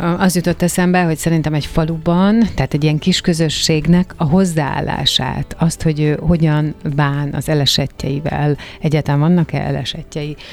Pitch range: 145-165 Hz